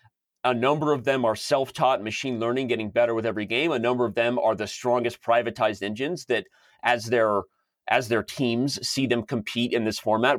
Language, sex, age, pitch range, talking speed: English, male, 30-49, 105-125 Hz, 195 wpm